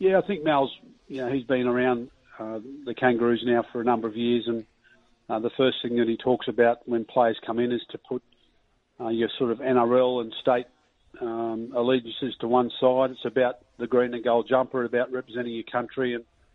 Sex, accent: male, Australian